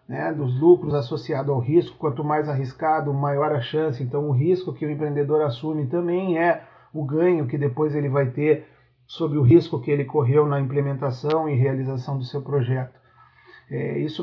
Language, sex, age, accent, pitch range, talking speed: Portuguese, male, 40-59, Brazilian, 130-155 Hz, 175 wpm